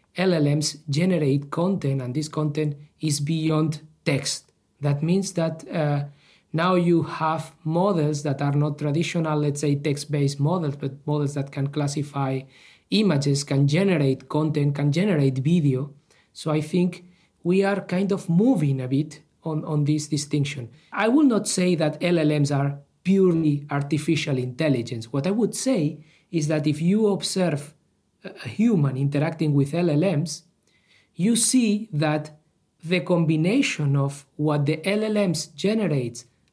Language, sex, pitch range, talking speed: English, male, 145-175 Hz, 140 wpm